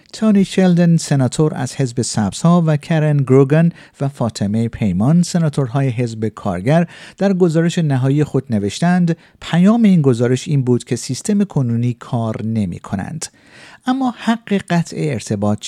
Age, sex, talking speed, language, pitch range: 50-69, male, 130 wpm, Persian, 120-175 Hz